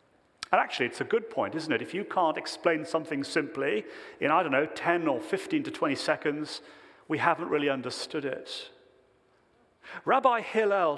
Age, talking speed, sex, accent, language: 40-59, 170 wpm, male, British, English